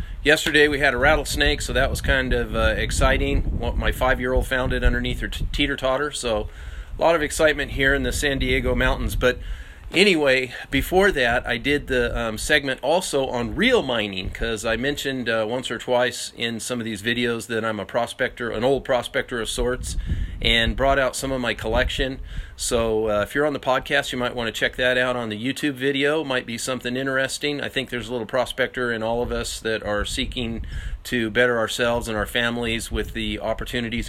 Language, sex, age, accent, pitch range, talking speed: English, male, 40-59, American, 110-135 Hz, 205 wpm